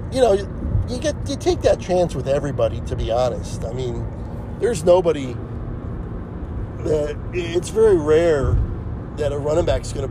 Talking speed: 165 wpm